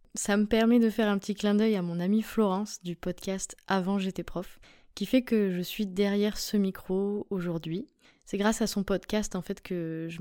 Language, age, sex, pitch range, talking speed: French, 20-39, female, 185-220 Hz, 210 wpm